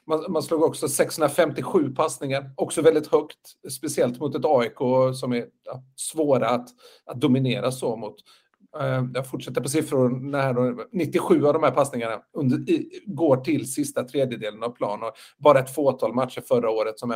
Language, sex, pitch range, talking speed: Swedish, male, 125-155 Hz, 150 wpm